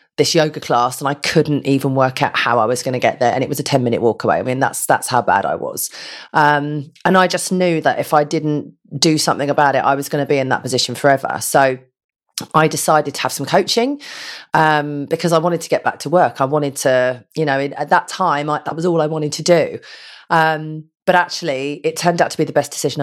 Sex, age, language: female, 30-49, English